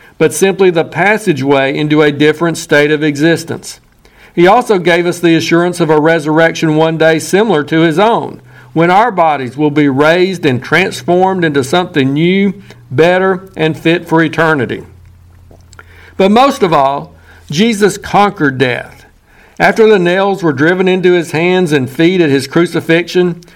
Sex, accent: male, American